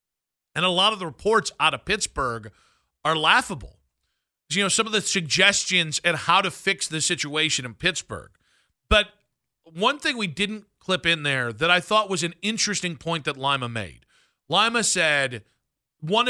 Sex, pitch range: male, 150-195 Hz